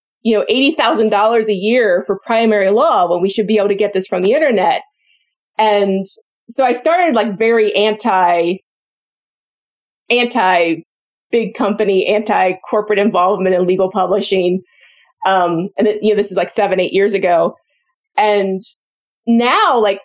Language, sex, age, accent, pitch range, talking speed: English, female, 30-49, American, 195-240 Hz, 145 wpm